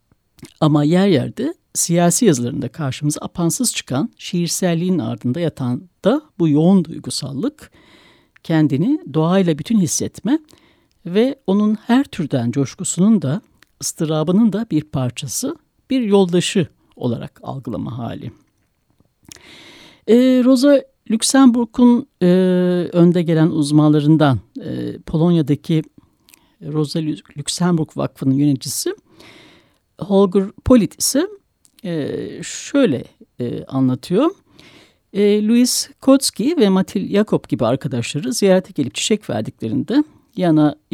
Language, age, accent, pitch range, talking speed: Turkish, 60-79, native, 150-225 Hz, 90 wpm